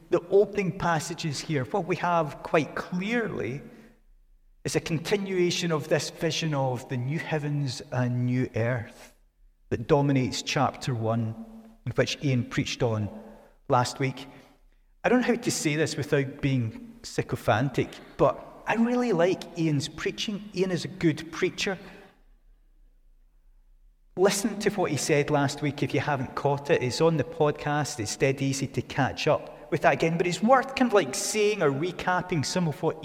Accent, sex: British, male